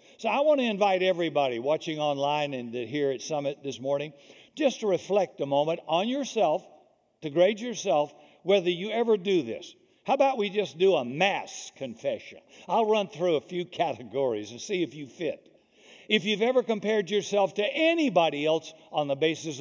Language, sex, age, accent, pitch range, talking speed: English, male, 60-79, American, 160-230 Hz, 180 wpm